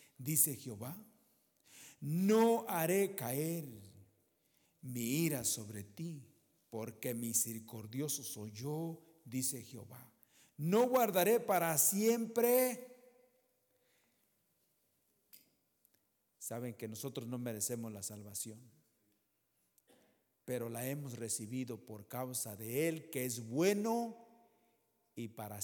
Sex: male